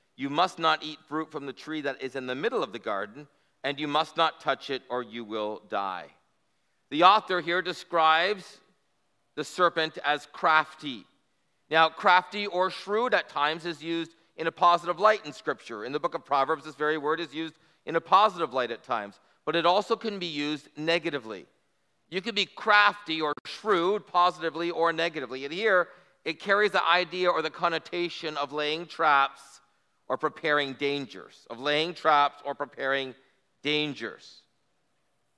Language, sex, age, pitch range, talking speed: English, male, 40-59, 145-180 Hz, 170 wpm